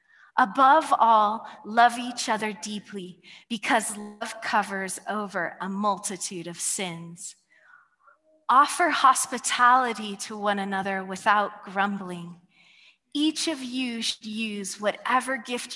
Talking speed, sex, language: 105 wpm, female, English